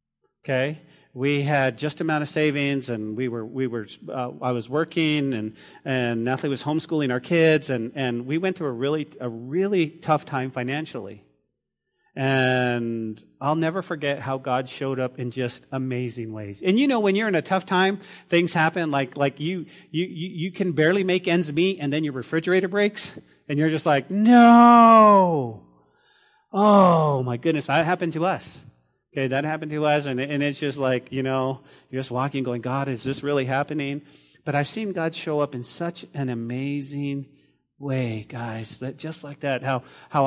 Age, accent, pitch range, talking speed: 40-59, American, 130-175 Hz, 185 wpm